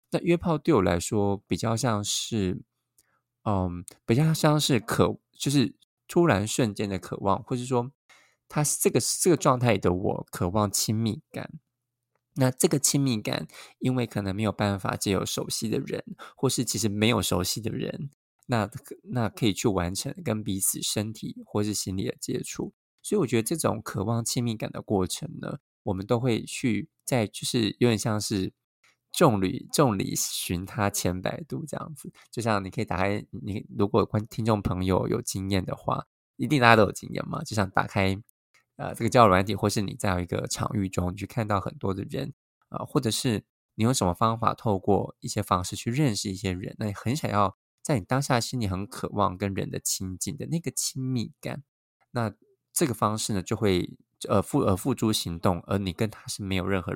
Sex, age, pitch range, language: male, 20-39, 100-130 Hz, Chinese